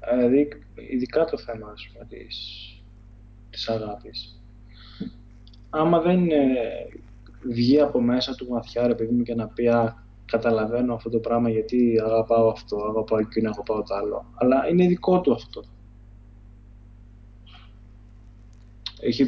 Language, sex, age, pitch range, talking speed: Greek, male, 20-39, 105-125 Hz, 120 wpm